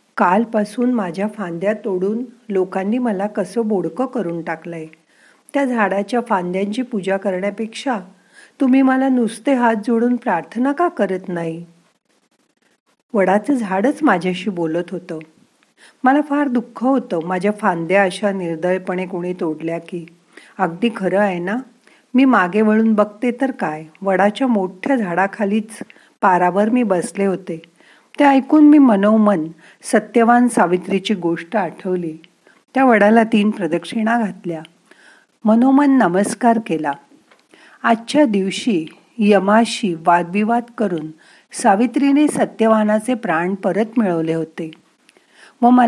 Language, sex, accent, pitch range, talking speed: Marathi, female, native, 185-245 Hz, 95 wpm